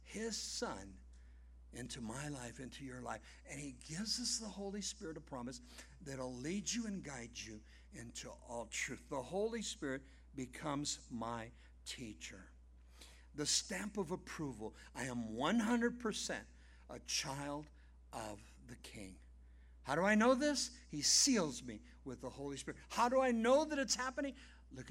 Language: English